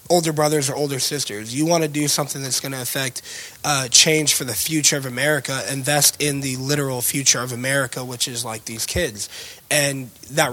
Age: 20-39